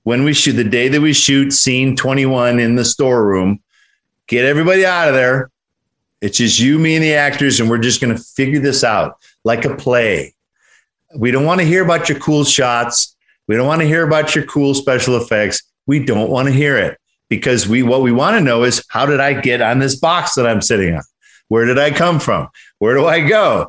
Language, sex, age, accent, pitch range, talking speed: English, male, 50-69, American, 125-155 Hz, 225 wpm